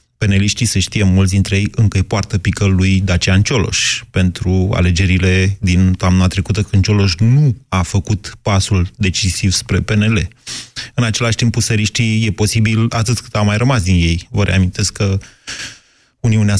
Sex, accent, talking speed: male, native, 150 wpm